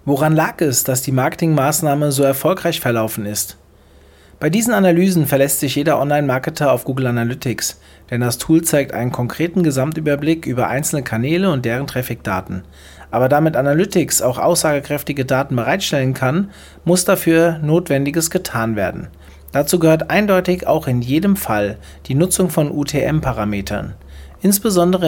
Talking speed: 140 wpm